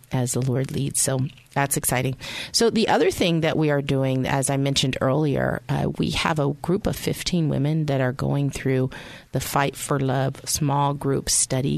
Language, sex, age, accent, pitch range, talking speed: English, female, 30-49, American, 130-150 Hz, 195 wpm